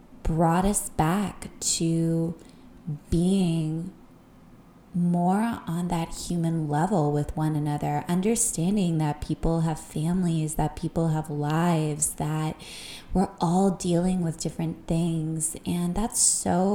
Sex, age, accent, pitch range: female, 20-39, American, 160-200 Hz